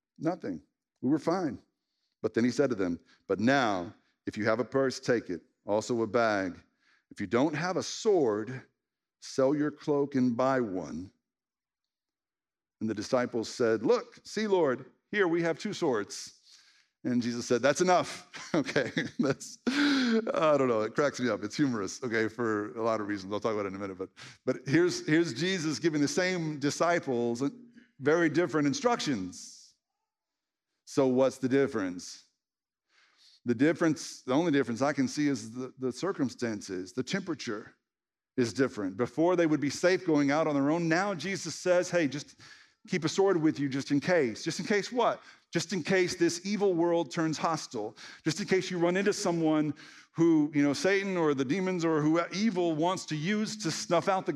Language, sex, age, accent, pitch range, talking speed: English, male, 50-69, American, 130-180 Hz, 185 wpm